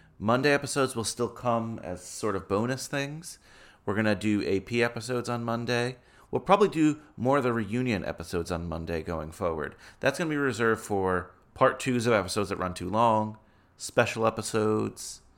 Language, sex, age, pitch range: English, male, 30-49, 90-115 Hz